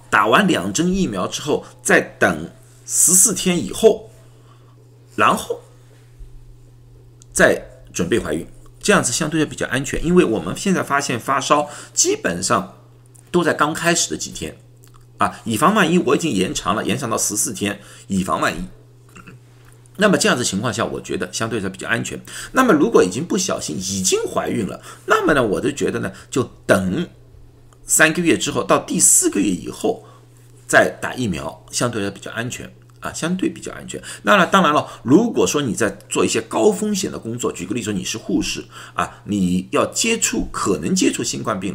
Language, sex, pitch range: Chinese, male, 100-150 Hz